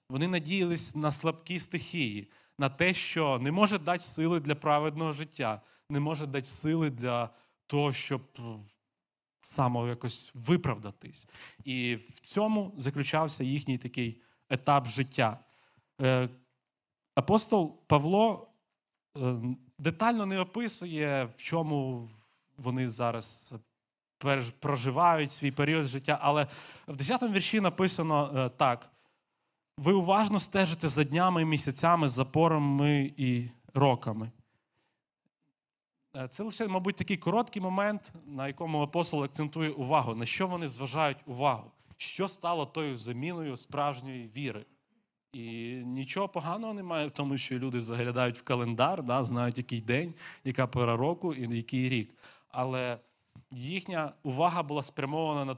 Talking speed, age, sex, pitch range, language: 120 wpm, 30-49, male, 125-165 Hz, Ukrainian